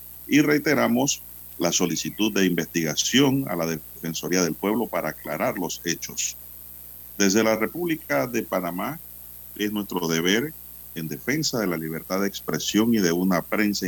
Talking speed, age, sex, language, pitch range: 145 wpm, 50-69, male, Spanish, 70-105 Hz